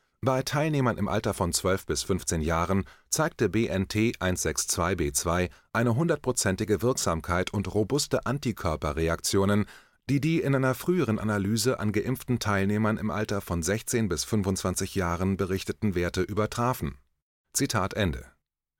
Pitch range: 90-115 Hz